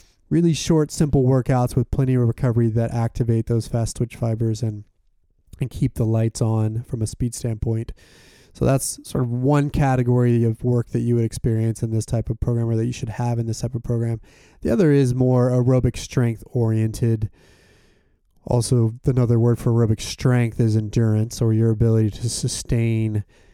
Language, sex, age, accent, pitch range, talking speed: English, male, 20-39, American, 110-125 Hz, 175 wpm